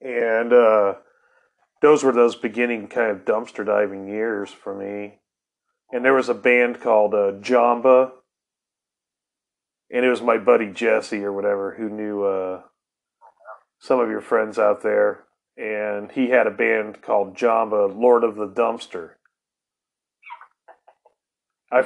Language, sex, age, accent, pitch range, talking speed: English, male, 30-49, American, 110-140 Hz, 135 wpm